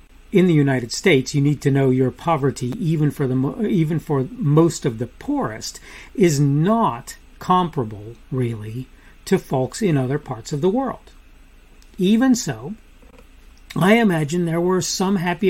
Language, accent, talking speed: English, American, 150 wpm